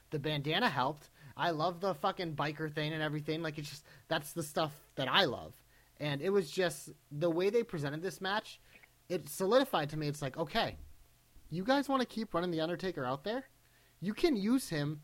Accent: American